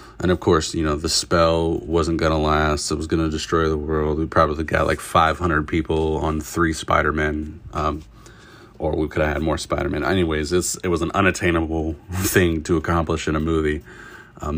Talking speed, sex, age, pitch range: 200 wpm, male, 30-49, 75-85 Hz